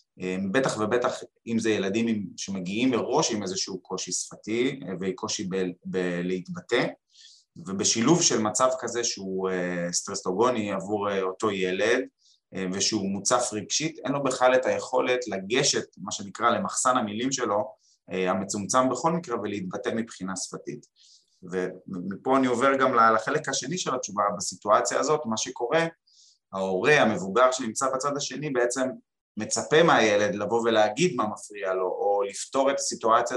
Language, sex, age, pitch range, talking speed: Hebrew, male, 20-39, 95-125 Hz, 130 wpm